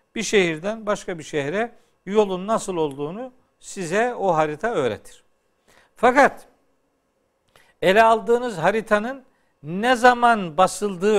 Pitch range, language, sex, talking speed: 160-230 Hz, Turkish, male, 100 wpm